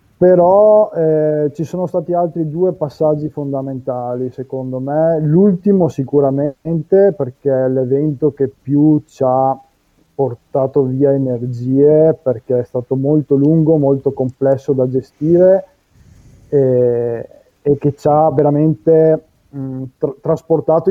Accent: native